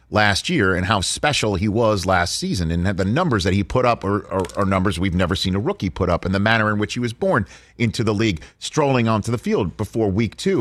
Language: English